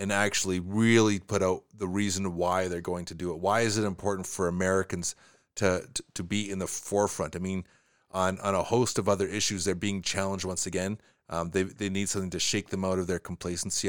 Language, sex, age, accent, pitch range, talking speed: English, male, 30-49, American, 90-105 Hz, 225 wpm